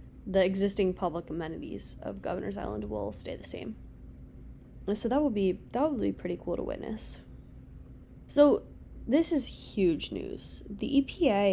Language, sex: English, female